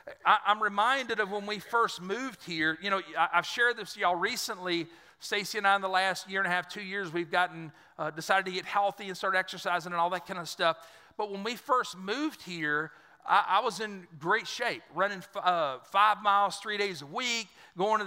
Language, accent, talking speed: English, American, 230 wpm